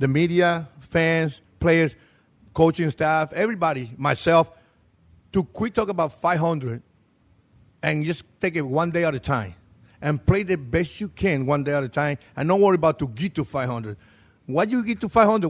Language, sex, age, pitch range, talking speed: English, male, 50-69, 135-175 Hz, 180 wpm